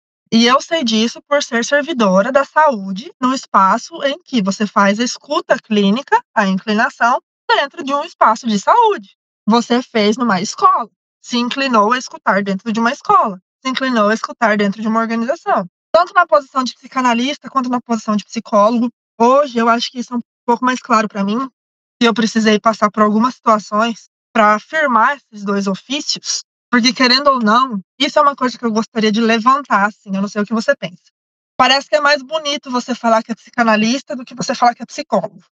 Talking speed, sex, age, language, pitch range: 200 wpm, female, 20-39, Portuguese, 215-280 Hz